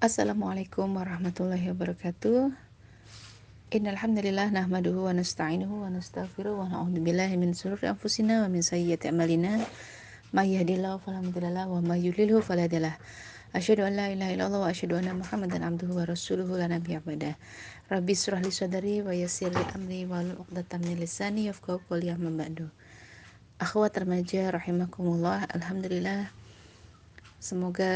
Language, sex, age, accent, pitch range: Indonesian, female, 30-49, native, 165-185 Hz